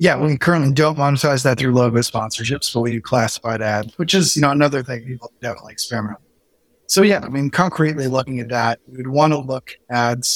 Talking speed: 225 wpm